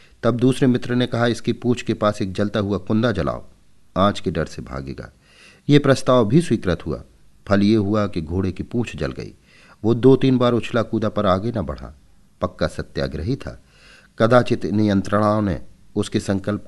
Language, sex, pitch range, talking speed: Hindi, male, 90-120 Hz, 185 wpm